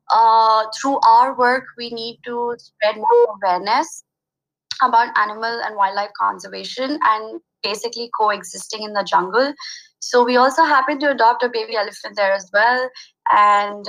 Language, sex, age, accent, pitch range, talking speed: English, female, 20-39, Indian, 210-250 Hz, 145 wpm